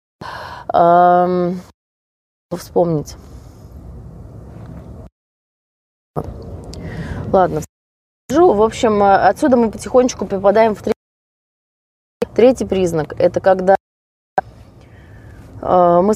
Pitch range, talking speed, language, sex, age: 150-200 Hz, 60 wpm, Russian, female, 20-39